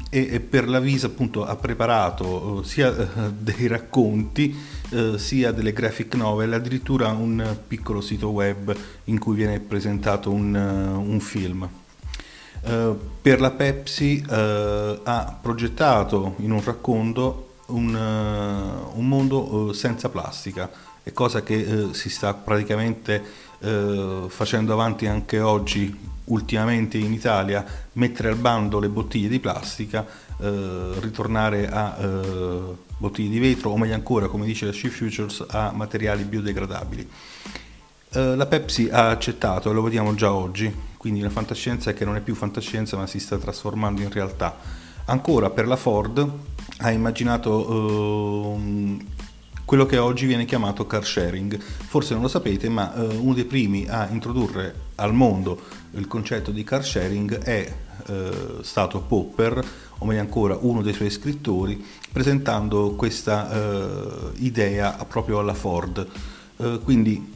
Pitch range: 100-115 Hz